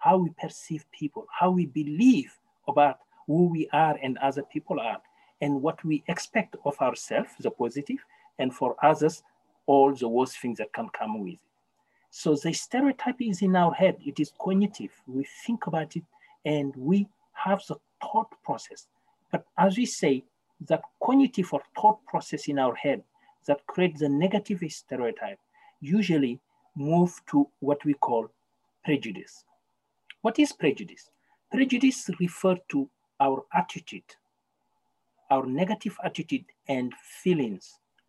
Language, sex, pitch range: English, male, 145-210 Hz